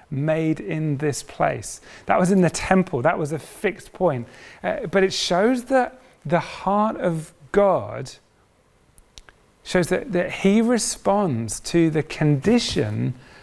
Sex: male